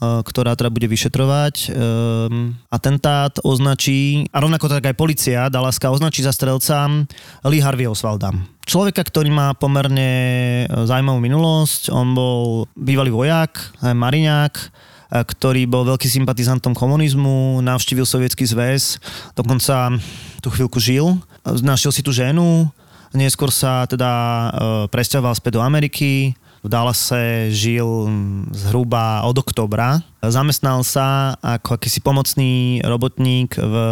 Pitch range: 115-140 Hz